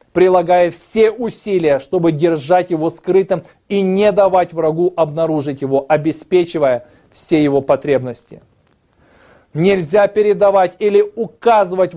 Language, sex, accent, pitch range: Russian, male, native, 145-190 Hz